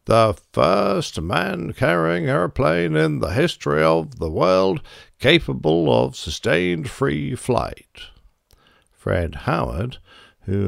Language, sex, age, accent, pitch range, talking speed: English, male, 60-79, British, 85-115 Hz, 100 wpm